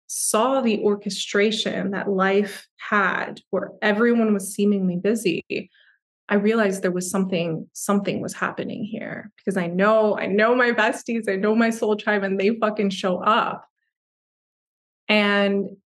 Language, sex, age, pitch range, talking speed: English, female, 20-39, 185-215 Hz, 145 wpm